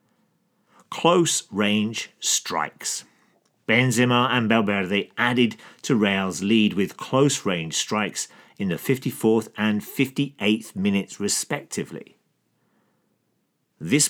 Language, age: English, 40-59